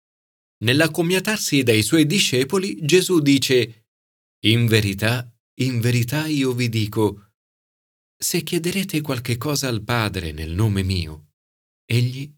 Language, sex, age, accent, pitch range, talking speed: Italian, male, 40-59, native, 105-150 Hz, 110 wpm